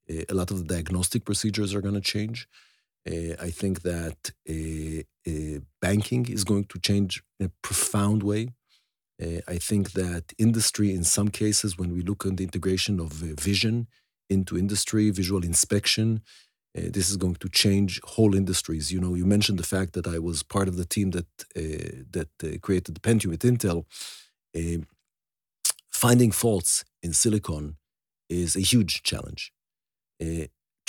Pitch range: 85-105 Hz